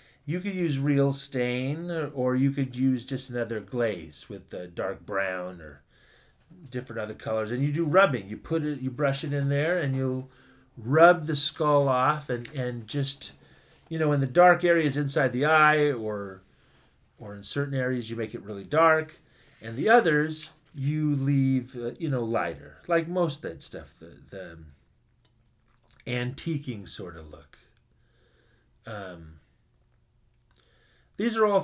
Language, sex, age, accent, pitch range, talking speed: English, male, 30-49, American, 115-145 Hz, 160 wpm